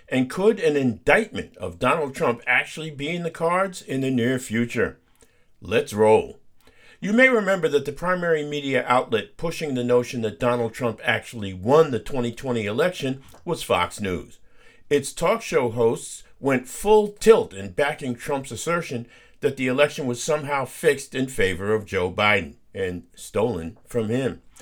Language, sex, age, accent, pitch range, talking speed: English, male, 50-69, American, 115-160 Hz, 160 wpm